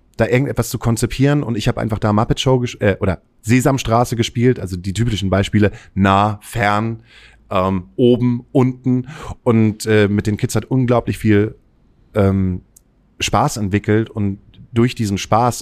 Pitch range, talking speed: 100-120 Hz, 150 wpm